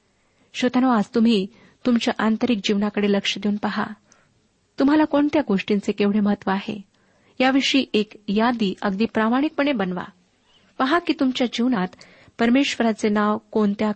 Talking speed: 120 wpm